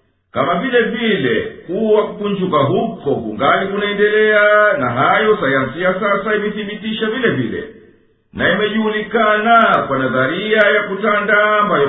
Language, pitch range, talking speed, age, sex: Swahili, 190-215 Hz, 110 wpm, 50-69, male